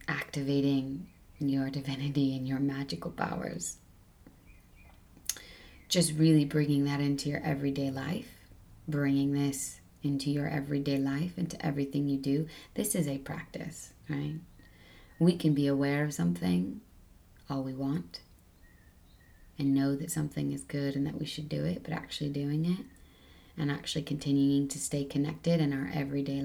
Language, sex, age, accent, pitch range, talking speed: English, female, 20-39, American, 135-150 Hz, 145 wpm